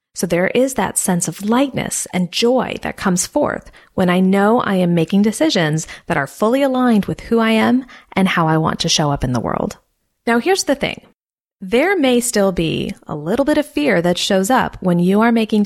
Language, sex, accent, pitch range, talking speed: English, female, American, 180-255 Hz, 220 wpm